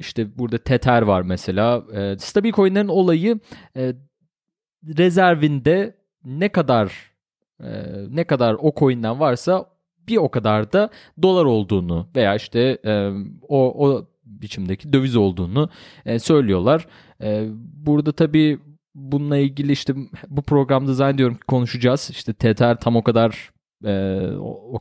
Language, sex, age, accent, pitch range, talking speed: Turkish, male, 30-49, native, 105-150 Hz, 115 wpm